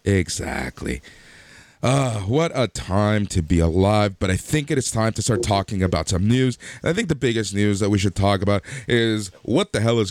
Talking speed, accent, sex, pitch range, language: 215 wpm, American, male, 95-125 Hz, English